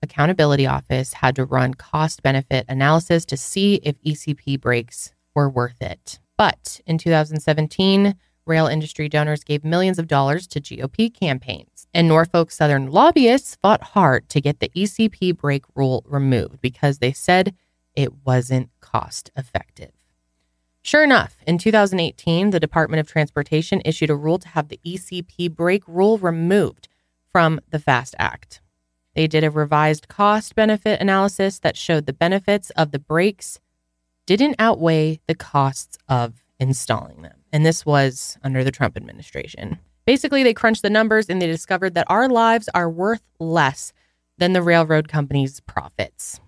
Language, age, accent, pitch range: English, 20-39, American, 135-180 Hz